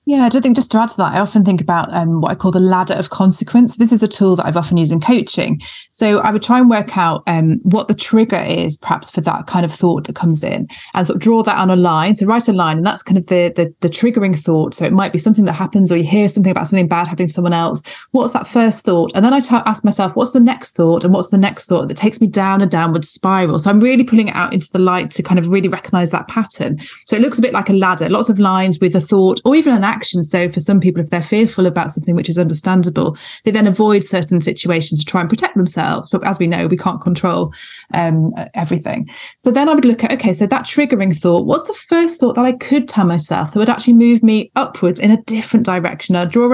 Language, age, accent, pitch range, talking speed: English, 30-49, British, 175-235 Hz, 275 wpm